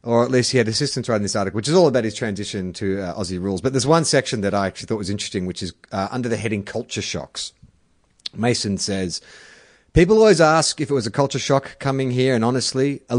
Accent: Australian